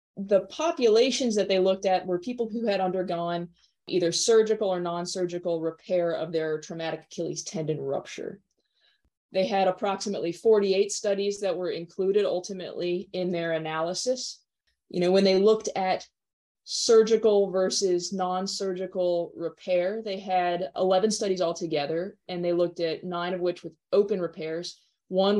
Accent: American